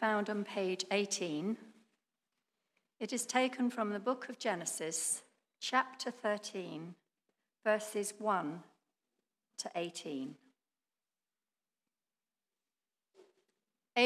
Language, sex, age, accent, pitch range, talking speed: English, female, 60-79, British, 185-235 Hz, 75 wpm